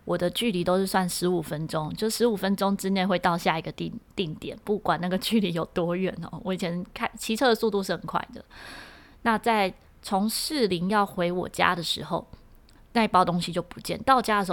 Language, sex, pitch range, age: Chinese, female, 175-225 Hz, 20-39